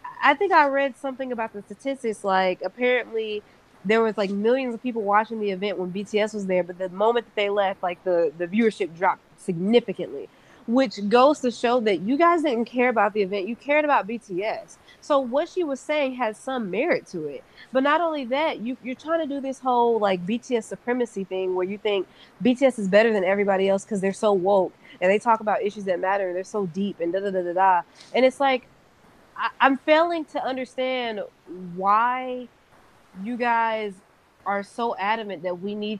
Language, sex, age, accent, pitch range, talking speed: English, female, 20-39, American, 195-245 Hz, 205 wpm